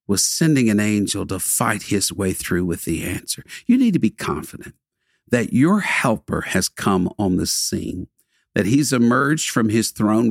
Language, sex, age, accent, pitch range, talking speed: English, male, 50-69, American, 100-155 Hz, 180 wpm